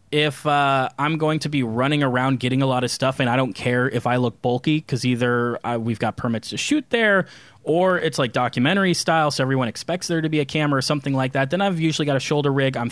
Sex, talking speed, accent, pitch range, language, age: male, 250 wpm, American, 125-150 Hz, English, 20-39